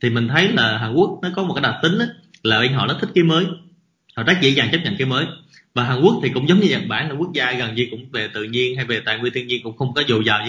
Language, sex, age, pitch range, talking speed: Vietnamese, male, 20-39, 120-160 Hz, 330 wpm